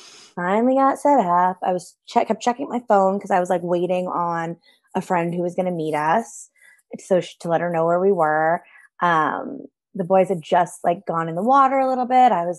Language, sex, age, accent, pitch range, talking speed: English, female, 20-39, American, 175-235 Hz, 230 wpm